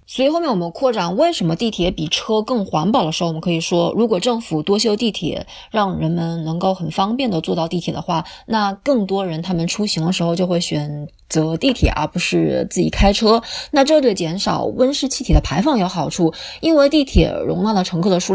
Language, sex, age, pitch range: Chinese, female, 20-39, 175-235 Hz